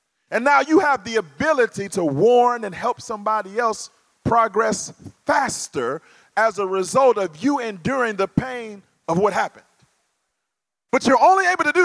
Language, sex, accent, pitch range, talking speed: English, male, American, 175-235 Hz, 155 wpm